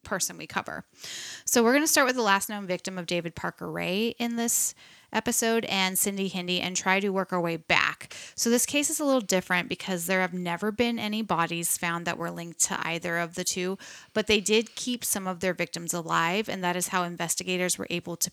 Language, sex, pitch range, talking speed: English, female, 175-215 Hz, 230 wpm